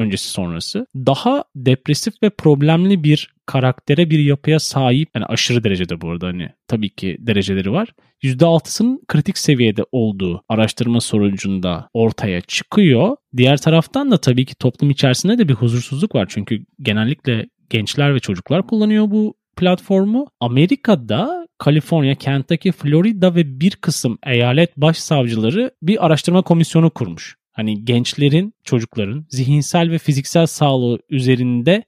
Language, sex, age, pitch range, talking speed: Turkish, male, 40-59, 120-180 Hz, 130 wpm